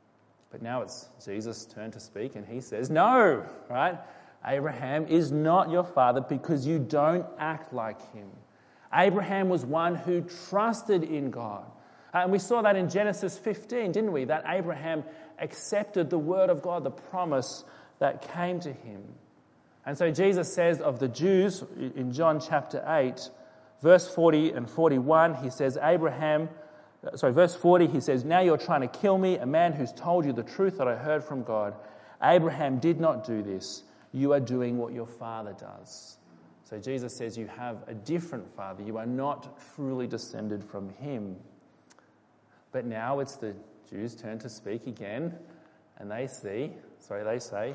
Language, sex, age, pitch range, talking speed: English, male, 30-49, 120-175 Hz, 170 wpm